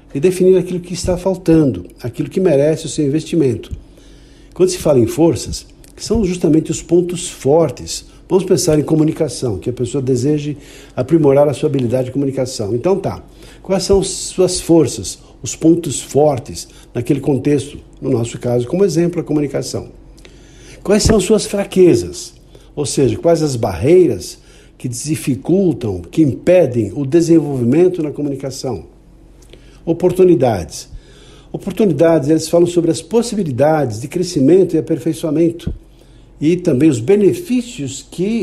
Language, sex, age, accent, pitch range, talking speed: Portuguese, male, 60-79, Brazilian, 135-175 Hz, 140 wpm